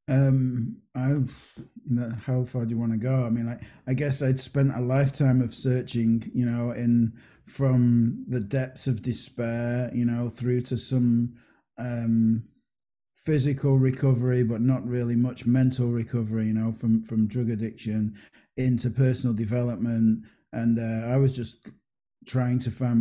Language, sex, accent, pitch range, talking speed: English, male, British, 115-125 Hz, 155 wpm